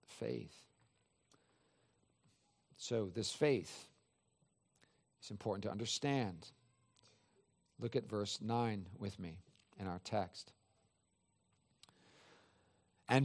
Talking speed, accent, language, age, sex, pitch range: 80 wpm, American, English, 50-69, male, 105-155 Hz